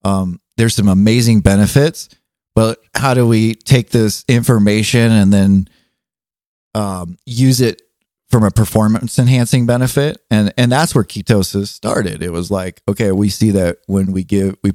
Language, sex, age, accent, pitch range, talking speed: English, male, 30-49, American, 95-110 Hz, 160 wpm